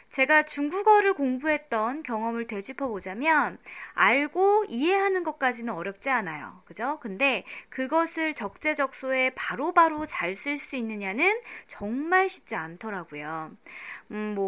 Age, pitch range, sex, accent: 20-39, 215-320 Hz, female, native